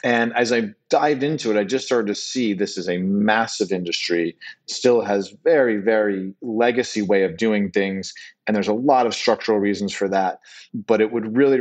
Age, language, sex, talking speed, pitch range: 40-59, English, male, 195 wpm, 95-115 Hz